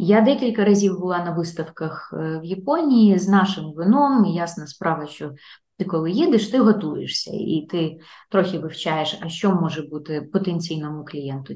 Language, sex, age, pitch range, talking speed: Ukrainian, female, 20-39, 165-210 Hz, 155 wpm